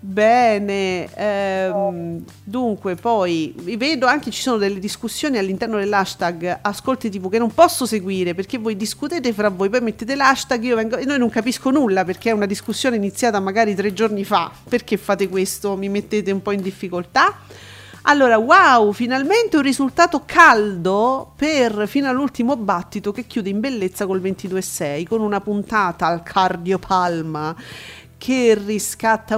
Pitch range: 195-260 Hz